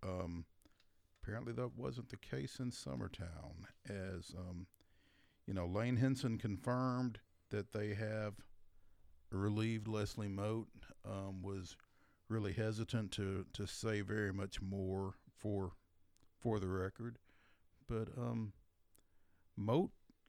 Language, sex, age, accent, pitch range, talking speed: English, male, 50-69, American, 95-125 Hz, 110 wpm